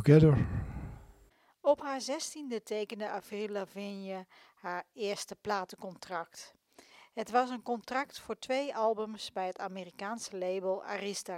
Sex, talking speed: female, 110 wpm